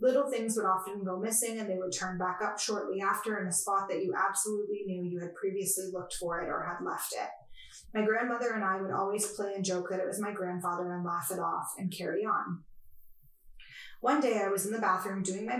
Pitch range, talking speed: 185-215 Hz, 235 wpm